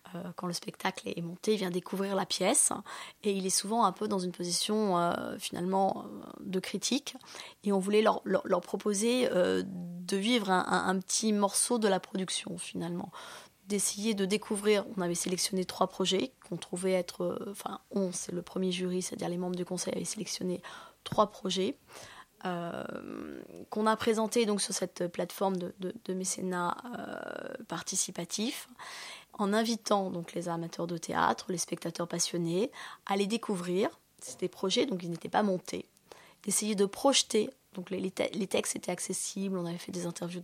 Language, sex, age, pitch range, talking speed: French, female, 20-39, 180-210 Hz, 170 wpm